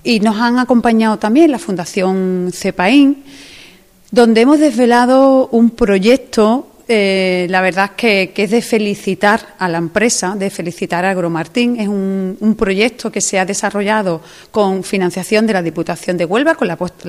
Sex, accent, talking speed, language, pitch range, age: female, Spanish, 160 wpm, Spanish, 185-225 Hz, 40-59